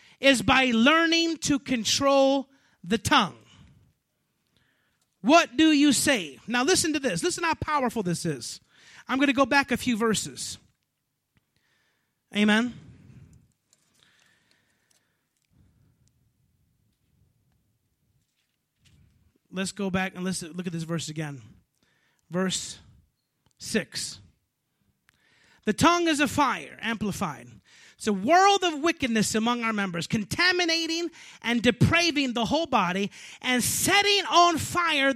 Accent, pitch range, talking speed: American, 210-310 Hz, 110 wpm